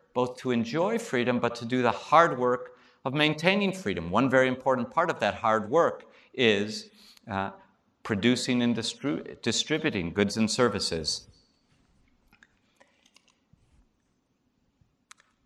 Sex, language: male, English